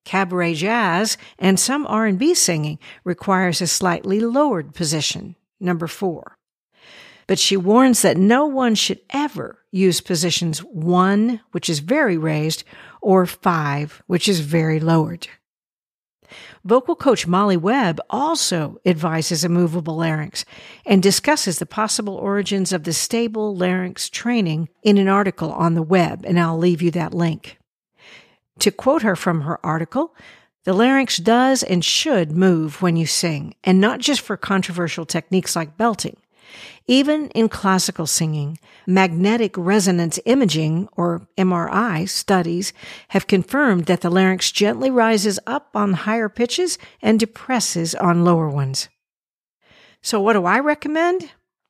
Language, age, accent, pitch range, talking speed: English, 50-69, American, 170-220 Hz, 140 wpm